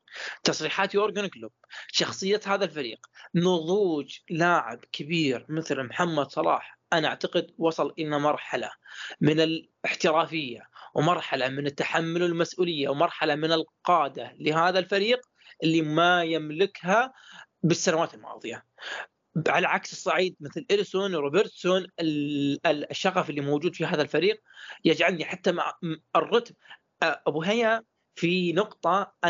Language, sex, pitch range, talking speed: Arabic, male, 155-190 Hz, 110 wpm